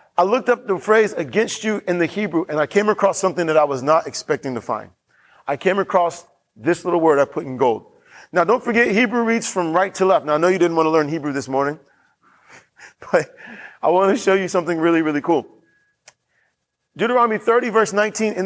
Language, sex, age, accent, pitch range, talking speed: English, male, 30-49, American, 165-215 Hz, 220 wpm